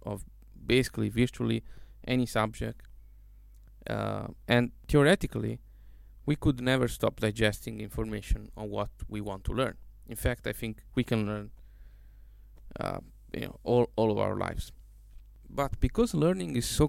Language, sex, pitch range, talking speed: English, male, 105-130 Hz, 140 wpm